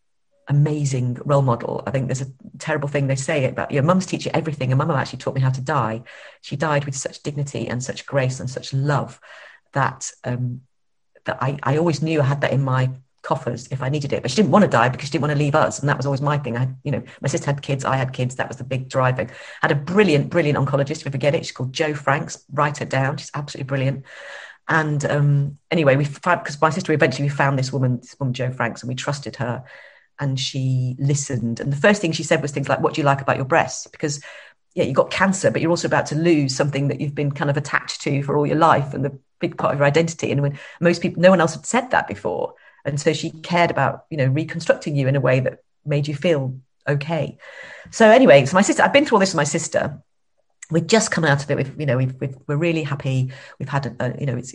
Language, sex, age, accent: English, female, 40-59, British